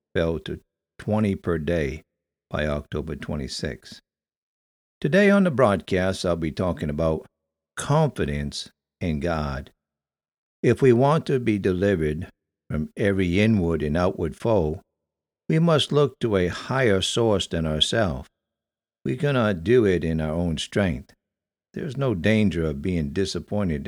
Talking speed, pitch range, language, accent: 140 wpm, 80-110 Hz, English, American